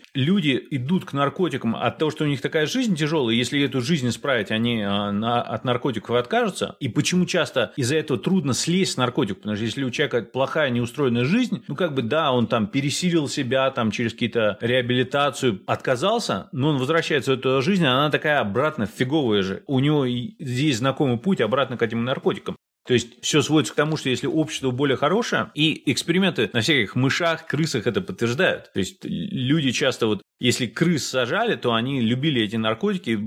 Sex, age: male, 30-49